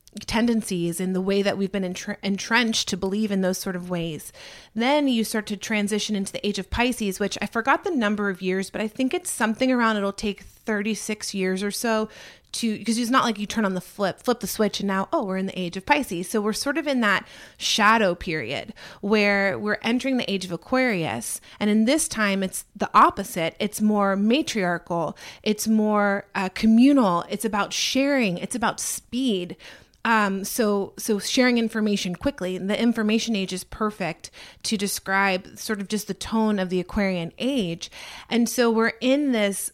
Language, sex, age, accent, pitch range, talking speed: English, female, 30-49, American, 195-230 Hz, 195 wpm